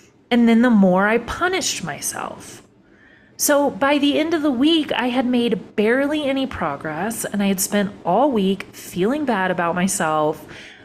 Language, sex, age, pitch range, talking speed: English, female, 30-49, 180-270 Hz, 165 wpm